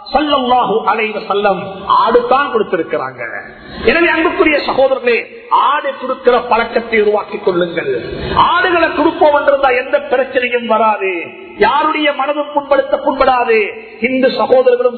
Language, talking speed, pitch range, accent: Tamil, 75 wpm, 235-290 Hz, native